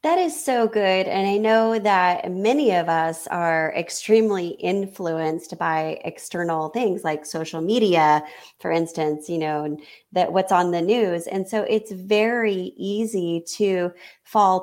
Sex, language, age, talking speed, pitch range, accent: female, English, 30-49, 150 wpm, 175-220 Hz, American